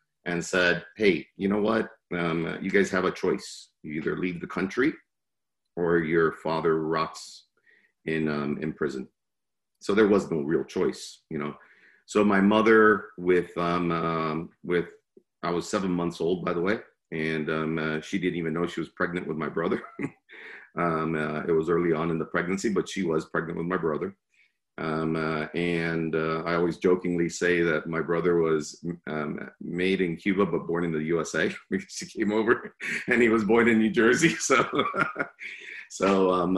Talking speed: 185 wpm